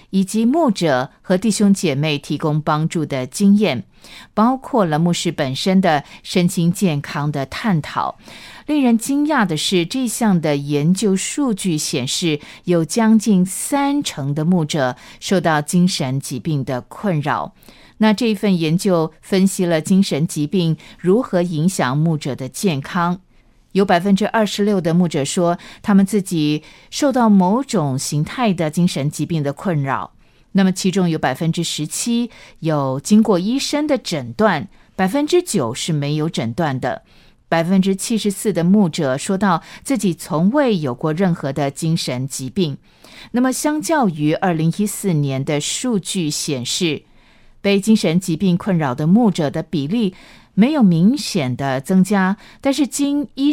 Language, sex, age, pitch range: Chinese, female, 50-69, 155-210 Hz